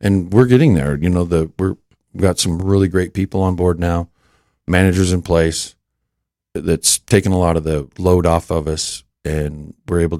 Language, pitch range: English, 80-95 Hz